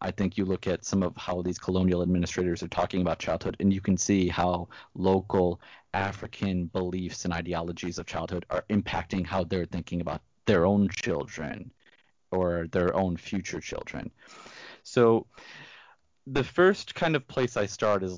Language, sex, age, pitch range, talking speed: English, male, 30-49, 85-100 Hz, 165 wpm